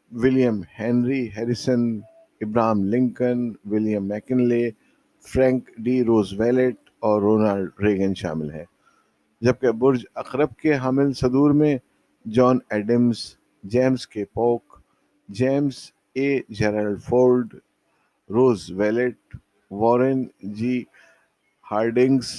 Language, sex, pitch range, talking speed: Urdu, male, 100-130 Hz, 100 wpm